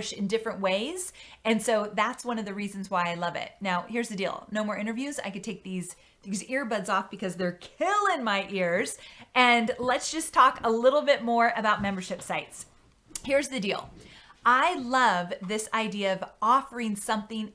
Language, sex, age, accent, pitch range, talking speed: English, female, 30-49, American, 200-255 Hz, 185 wpm